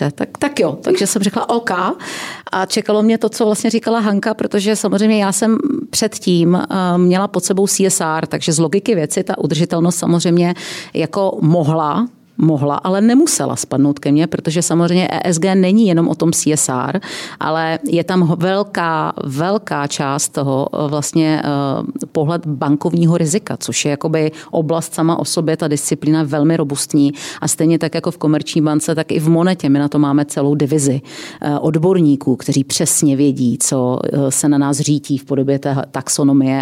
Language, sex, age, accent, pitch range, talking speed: Czech, female, 40-59, native, 150-195 Hz, 160 wpm